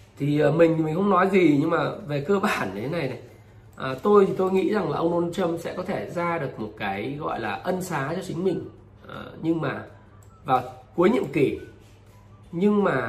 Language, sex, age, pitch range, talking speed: Vietnamese, male, 20-39, 110-175 Hz, 205 wpm